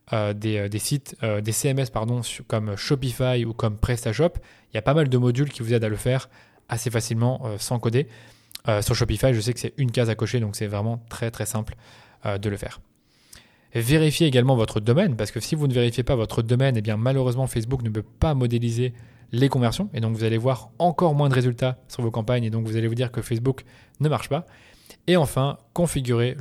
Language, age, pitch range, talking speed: French, 20-39, 115-135 Hz, 235 wpm